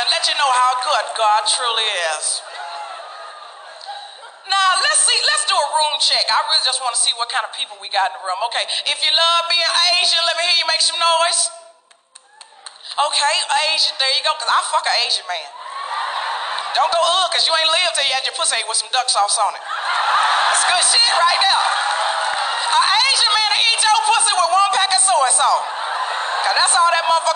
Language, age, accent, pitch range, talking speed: English, 40-59, American, 295-415 Hz, 215 wpm